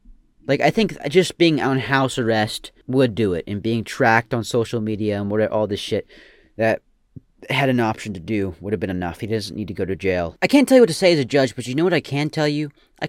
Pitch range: 115-160 Hz